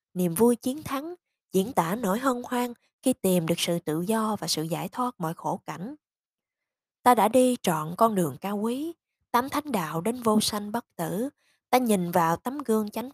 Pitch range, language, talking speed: 180-250 Hz, Vietnamese, 200 wpm